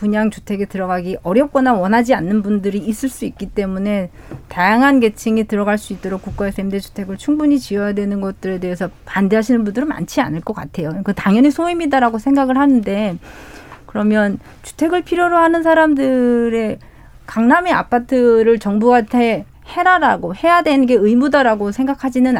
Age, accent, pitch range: 40-59, native, 205-270 Hz